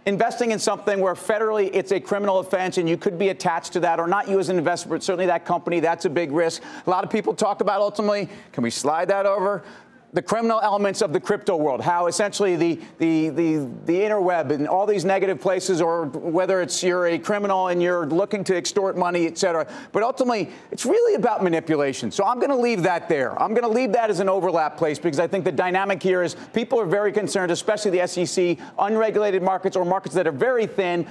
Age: 40-59